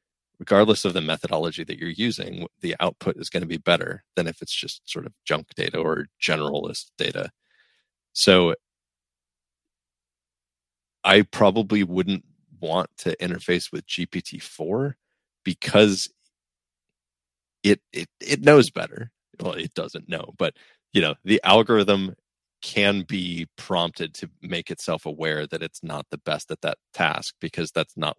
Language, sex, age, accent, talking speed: English, male, 30-49, American, 145 wpm